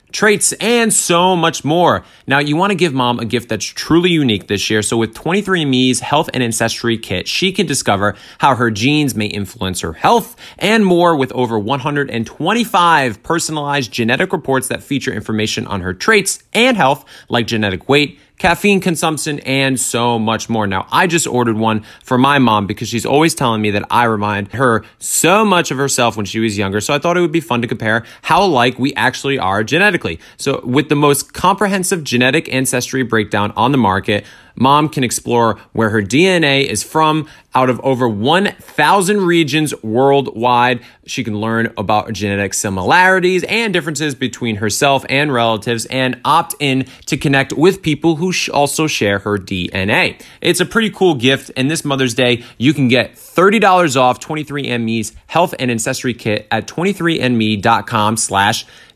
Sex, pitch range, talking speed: male, 115-155 Hz, 175 wpm